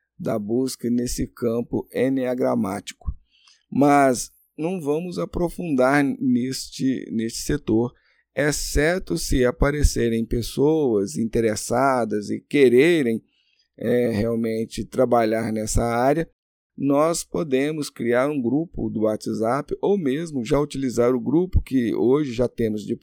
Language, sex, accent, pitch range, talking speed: Portuguese, male, Brazilian, 115-155 Hz, 105 wpm